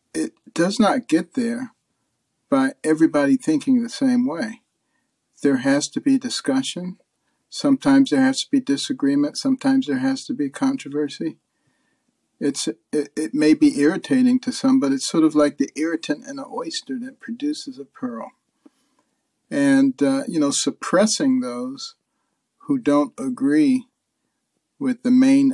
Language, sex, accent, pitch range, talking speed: English, male, American, 230-270 Hz, 145 wpm